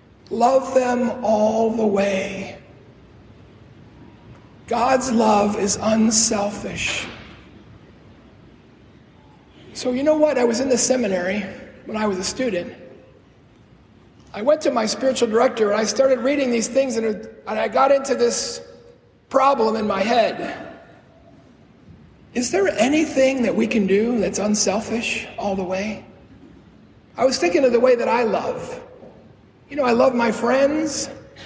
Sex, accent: male, American